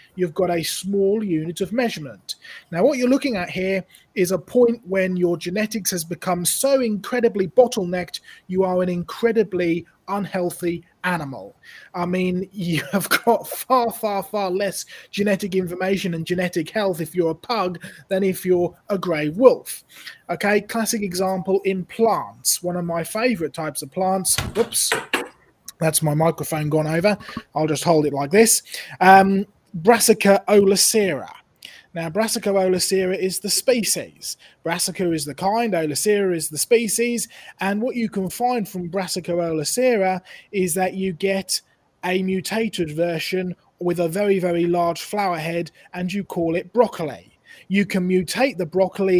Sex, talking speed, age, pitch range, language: male, 155 wpm, 20-39, 175-205 Hz, English